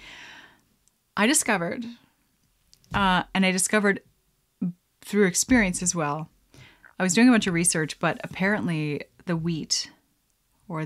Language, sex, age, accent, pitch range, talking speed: English, female, 20-39, American, 170-225 Hz, 120 wpm